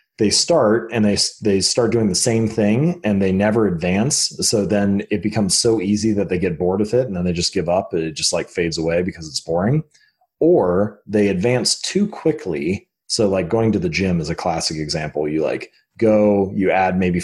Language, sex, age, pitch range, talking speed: English, male, 30-49, 90-120 Hz, 215 wpm